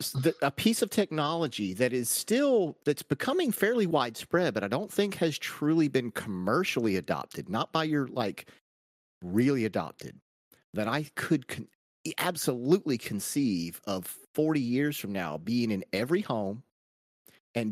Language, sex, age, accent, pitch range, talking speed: English, male, 40-59, American, 100-150 Hz, 140 wpm